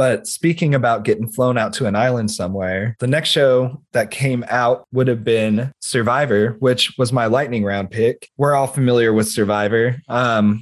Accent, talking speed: American, 180 wpm